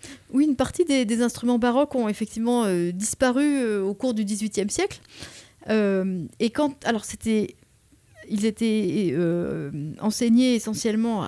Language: French